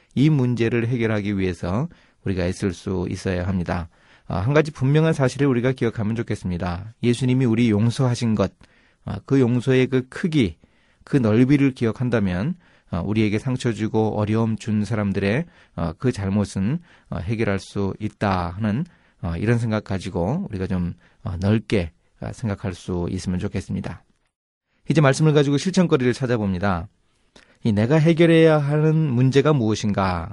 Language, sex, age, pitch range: Korean, male, 30-49, 100-125 Hz